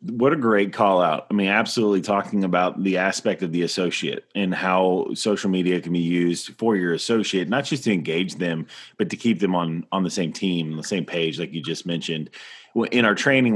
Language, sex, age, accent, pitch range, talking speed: English, male, 30-49, American, 90-115 Hz, 215 wpm